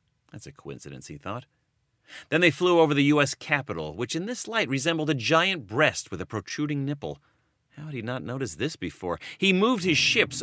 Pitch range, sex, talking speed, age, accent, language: 100-155 Hz, male, 200 wpm, 30-49, American, English